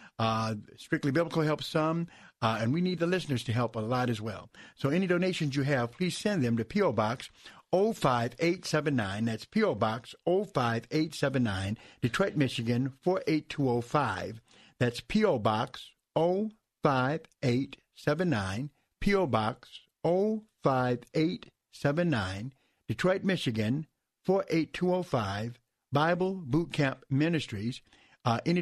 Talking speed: 110 wpm